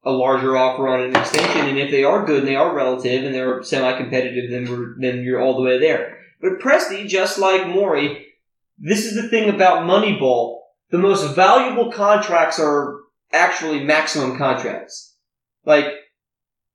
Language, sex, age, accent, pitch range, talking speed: English, male, 30-49, American, 140-235 Hz, 160 wpm